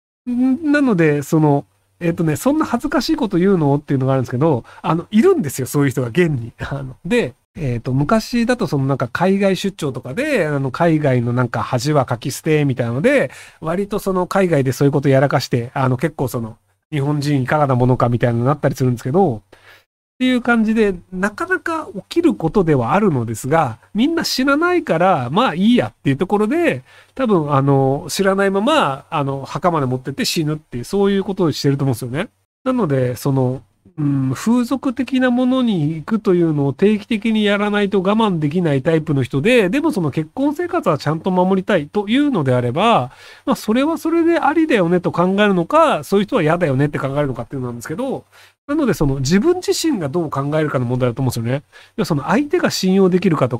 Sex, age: male, 40-59